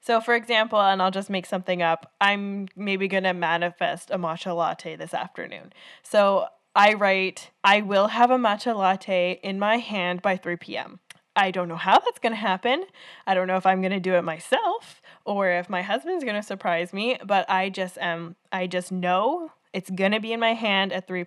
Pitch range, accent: 180-210 Hz, American